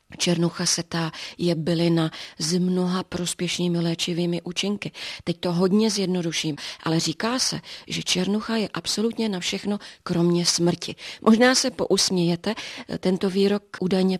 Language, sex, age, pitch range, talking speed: Czech, female, 40-59, 160-185 Hz, 125 wpm